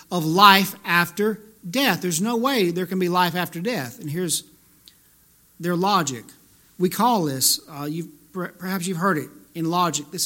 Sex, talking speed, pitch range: male, 175 wpm, 155-215 Hz